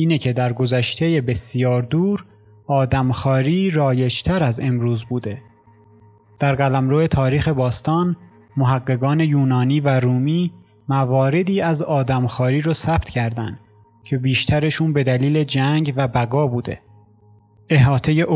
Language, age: Persian, 30-49